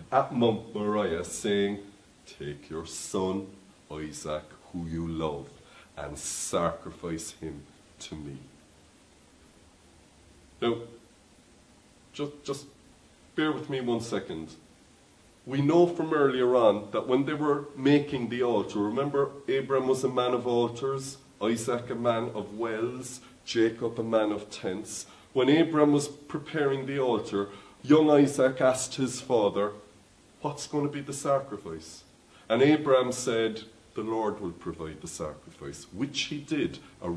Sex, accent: male, Irish